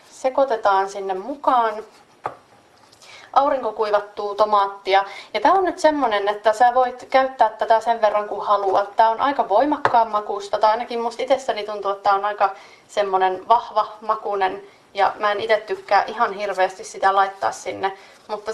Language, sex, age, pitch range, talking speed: Finnish, female, 30-49, 195-235 Hz, 150 wpm